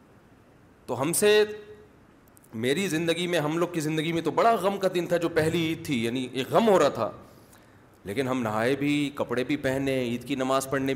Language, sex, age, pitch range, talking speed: Urdu, male, 40-59, 125-150 Hz, 210 wpm